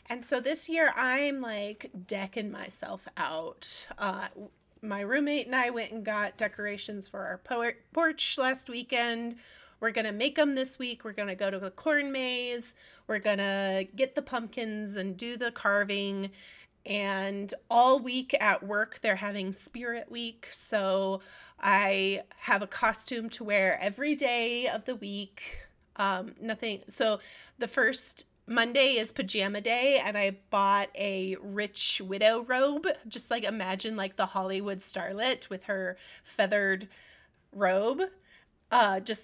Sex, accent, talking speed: female, American, 150 wpm